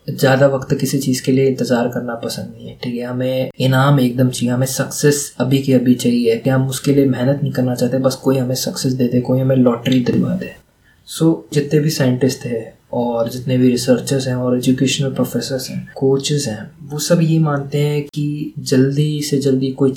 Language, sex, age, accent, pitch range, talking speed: Hindi, male, 20-39, native, 125-135 Hz, 205 wpm